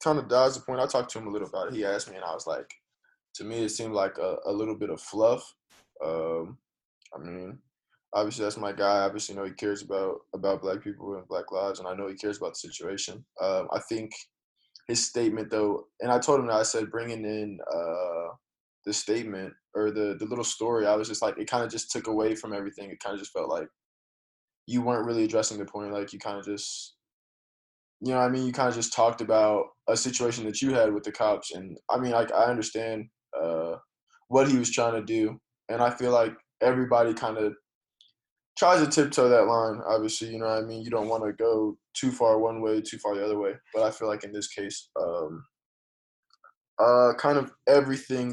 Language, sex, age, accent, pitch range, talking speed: English, male, 20-39, American, 105-120 Hz, 230 wpm